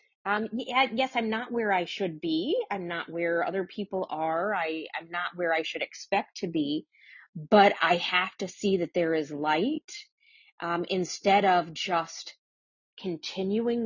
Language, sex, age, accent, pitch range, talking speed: English, female, 30-49, American, 165-200 Hz, 160 wpm